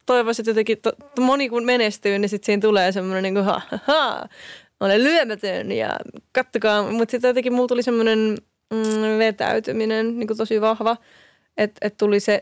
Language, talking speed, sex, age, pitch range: Finnish, 155 wpm, female, 20-39, 210-240 Hz